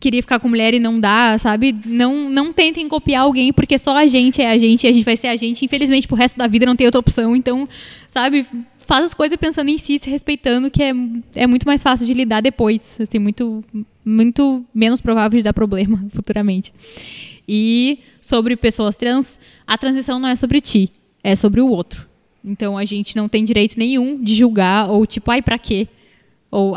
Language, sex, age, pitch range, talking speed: Portuguese, female, 10-29, 225-280 Hz, 210 wpm